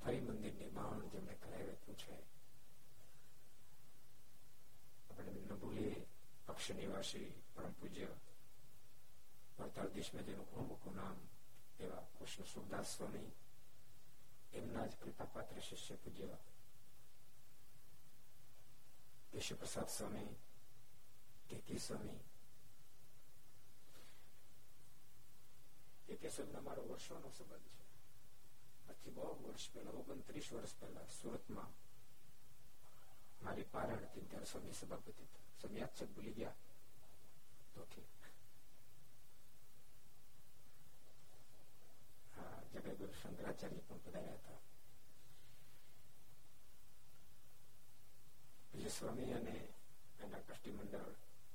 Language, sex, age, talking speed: Gujarati, male, 60-79, 55 wpm